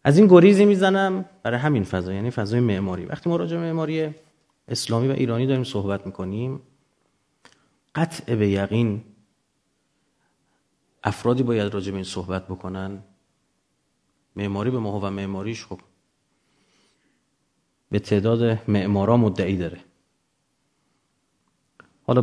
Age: 30-49